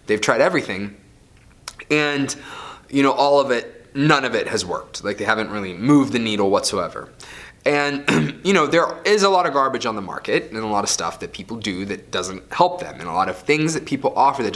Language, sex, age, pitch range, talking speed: English, male, 20-39, 115-160 Hz, 225 wpm